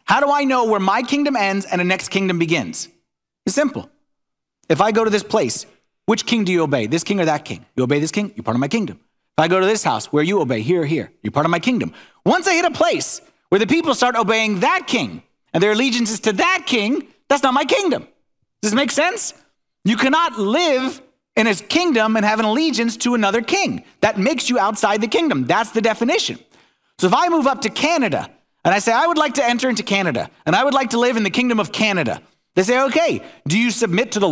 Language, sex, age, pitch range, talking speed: English, male, 30-49, 190-275 Hz, 250 wpm